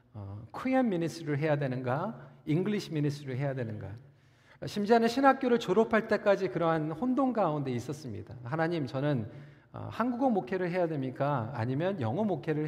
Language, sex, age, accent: Korean, male, 40-59, native